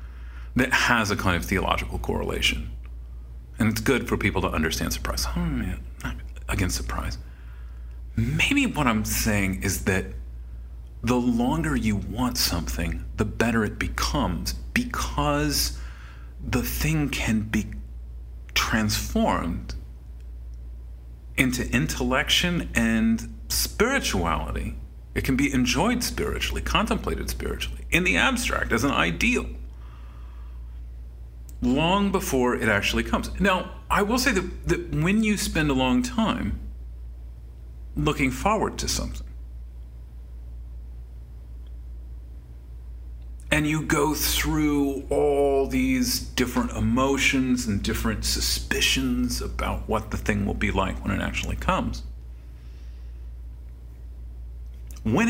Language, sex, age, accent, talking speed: English, male, 40-59, American, 110 wpm